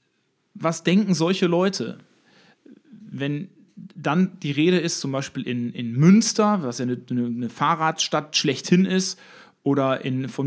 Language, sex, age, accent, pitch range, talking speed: German, male, 40-59, German, 140-180 Hz, 140 wpm